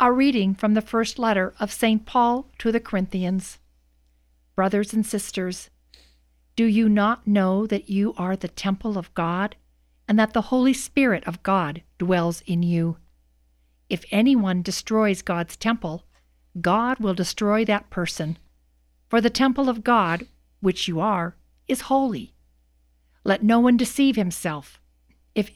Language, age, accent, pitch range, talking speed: English, 50-69, American, 175-230 Hz, 145 wpm